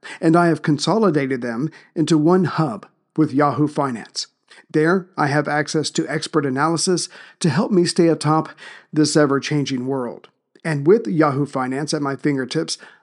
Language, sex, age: English, male, 50-69